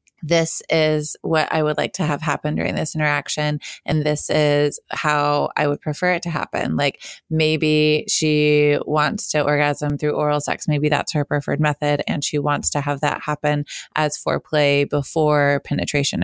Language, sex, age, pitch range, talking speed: English, female, 20-39, 150-165 Hz, 175 wpm